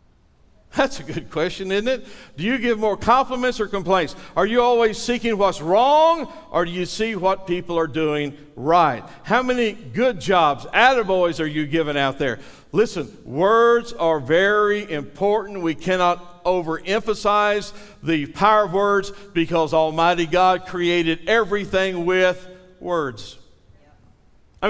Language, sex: English, male